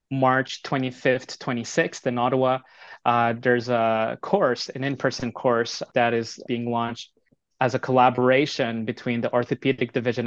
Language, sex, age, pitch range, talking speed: English, male, 20-39, 120-130 Hz, 135 wpm